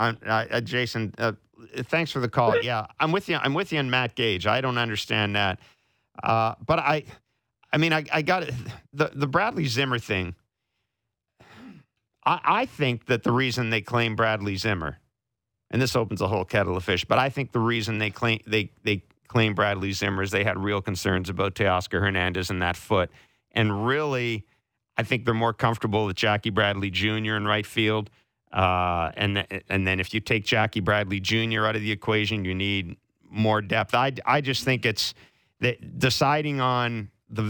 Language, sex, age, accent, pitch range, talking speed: English, male, 40-59, American, 105-120 Hz, 190 wpm